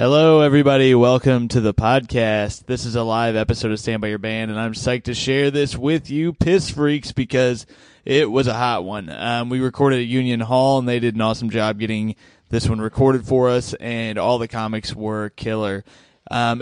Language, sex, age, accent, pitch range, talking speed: English, male, 20-39, American, 110-130 Hz, 205 wpm